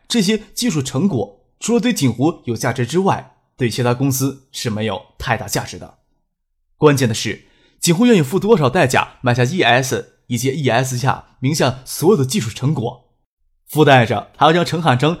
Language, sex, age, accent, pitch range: Chinese, male, 20-39, native, 120-155 Hz